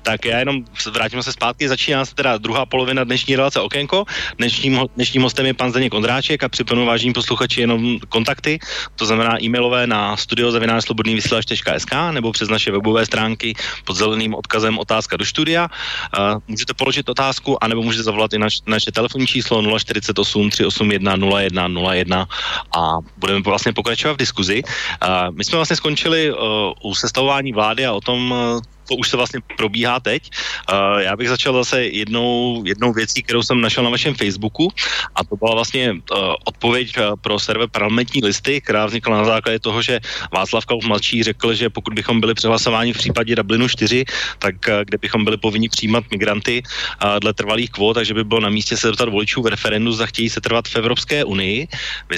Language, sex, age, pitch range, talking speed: Slovak, male, 30-49, 110-125 Hz, 175 wpm